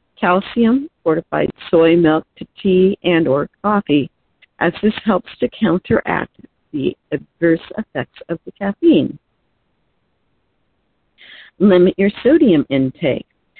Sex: female